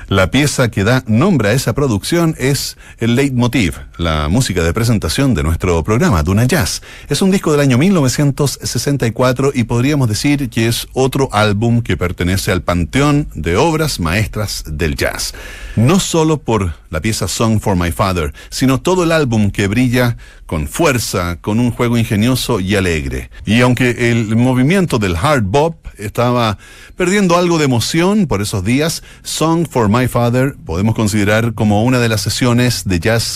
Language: Spanish